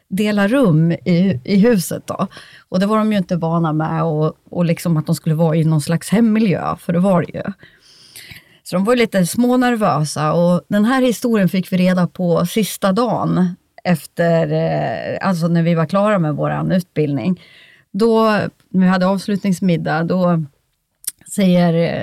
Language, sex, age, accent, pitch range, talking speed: Swedish, female, 30-49, native, 165-210 Hz, 170 wpm